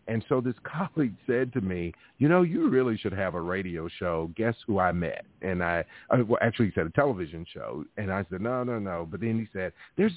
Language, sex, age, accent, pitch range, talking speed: English, male, 50-69, American, 95-115 Hz, 235 wpm